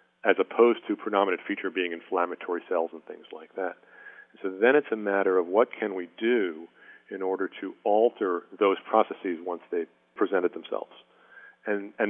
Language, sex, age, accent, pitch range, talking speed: English, male, 40-59, American, 95-110 Hz, 170 wpm